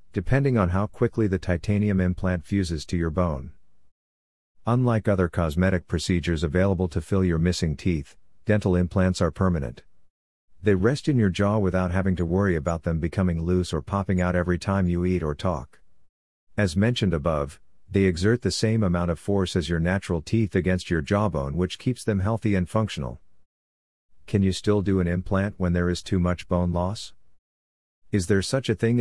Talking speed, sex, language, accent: 180 wpm, male, English, American